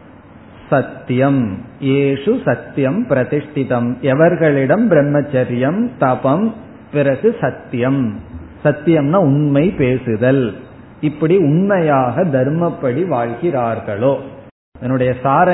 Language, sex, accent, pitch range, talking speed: Tamil, male, native, 125-145 Hz, 70 wpm